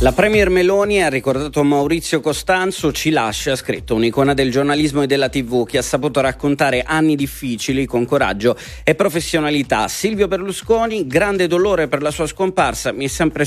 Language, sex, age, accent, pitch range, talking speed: Italian, male, 30-49, native, 130-155 Hz, 170 wpm